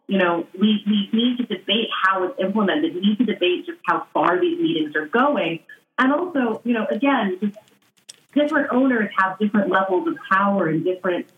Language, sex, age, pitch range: English, female, 30-49, 180-245 Hz